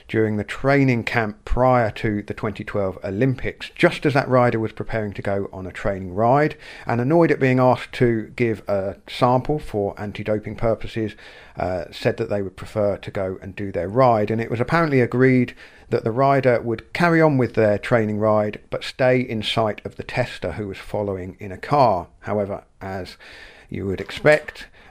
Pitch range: 105-125 Hz